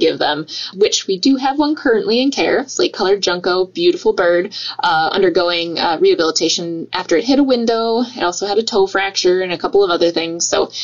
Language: English